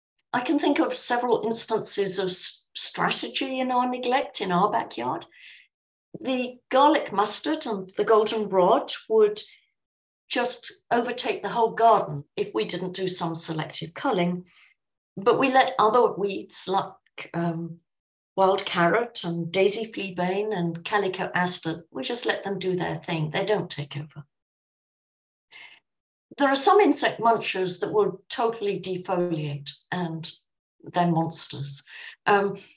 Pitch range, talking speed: 180-235 Hz, 135 wpm